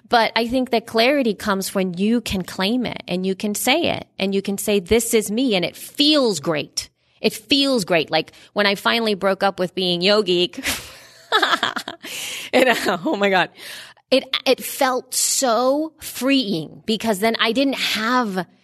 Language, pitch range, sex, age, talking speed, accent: English, 165-230 Hz, female, 30-49, 165 wpm, American